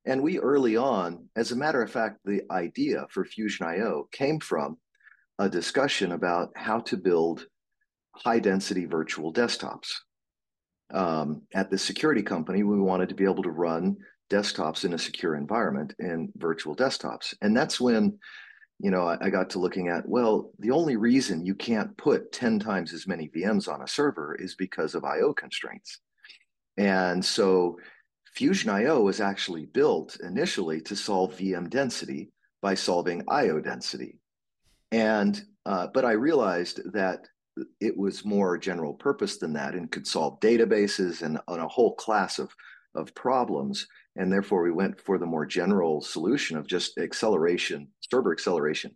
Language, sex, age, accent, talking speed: English, male, 40-59, American, 160 wpm